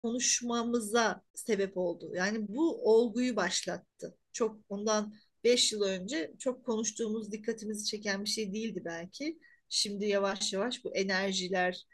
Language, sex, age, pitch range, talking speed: Turkish, female, 40-59, 205-270 Hz, 125 wpm